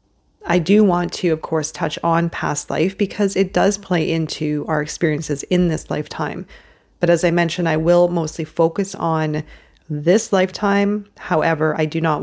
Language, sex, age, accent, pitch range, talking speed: English, female, 30-49, American, 160-180 Hz, 170 wpm